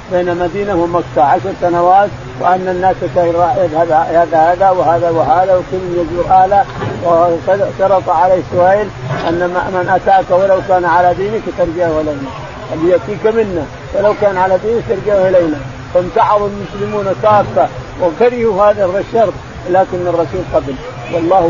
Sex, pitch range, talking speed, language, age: male, 165-200 Hz, 130 wpm, Arabic, 50-69